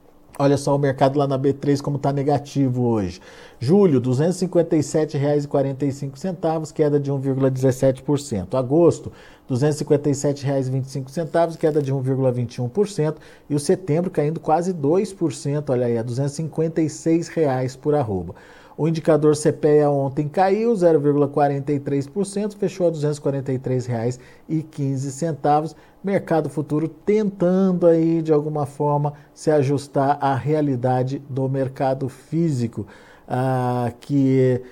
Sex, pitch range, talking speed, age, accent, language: male, 130-165 Hz, 105 wpm, 50-69, Brazilian, Portuguese